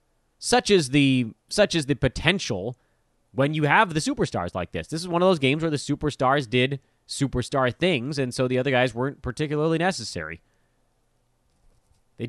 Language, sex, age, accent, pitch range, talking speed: English, male, 30-49, American, 110-165 Hz, 170 wpm